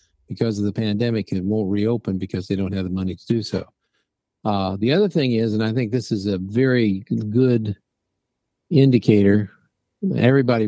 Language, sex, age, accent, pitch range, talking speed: English, male, 50-69, American, 100-115 Hz, 175 wpm